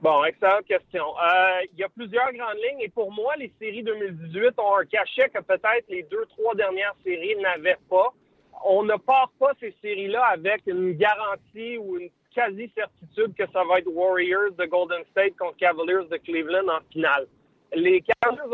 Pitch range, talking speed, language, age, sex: 180-235 Hz, 180 wpm, French, 30-49, male